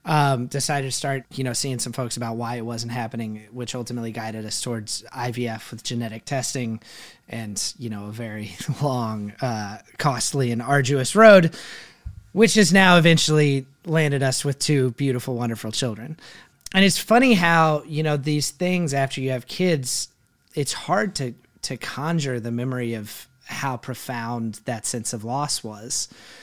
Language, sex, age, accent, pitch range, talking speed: English, male, 30-49, American, 125-160 Hz, 165 wpm